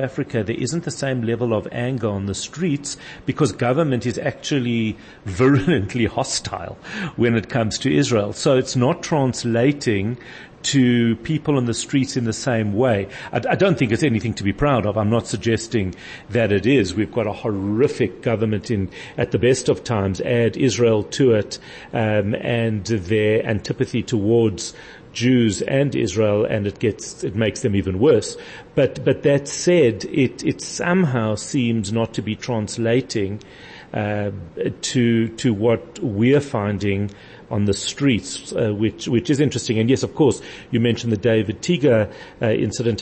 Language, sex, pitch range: English, male, 105-125 Hz